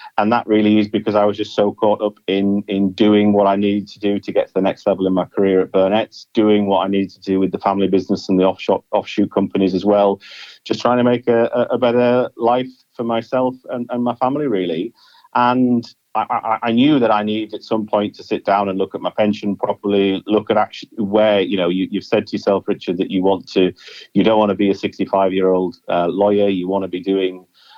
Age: 40-59